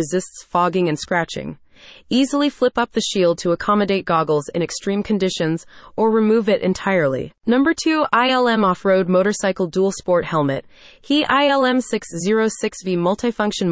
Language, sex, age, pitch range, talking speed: English, female, 20-39, 175-235 Hz, 130 wpm